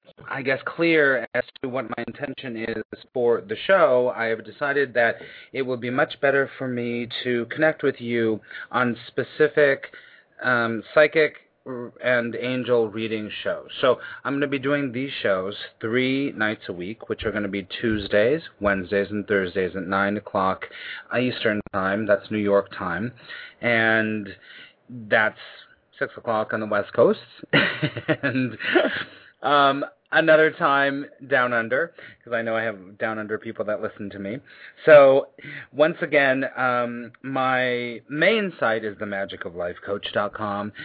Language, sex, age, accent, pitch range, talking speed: English, male, 30-49, American, 110-140 Hz, 145 wpm